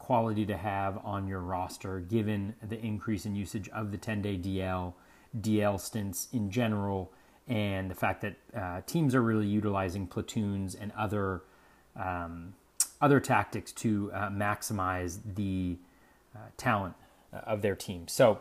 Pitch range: 100-125 Hz